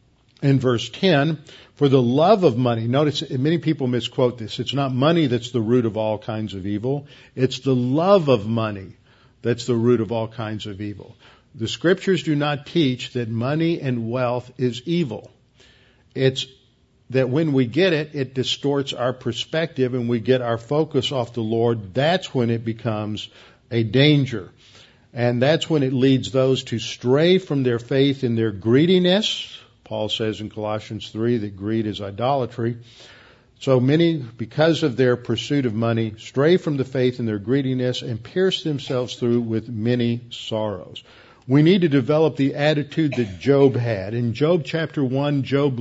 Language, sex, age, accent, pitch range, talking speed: English, male, 50-69, American, 115-145 Hz, 170 wpm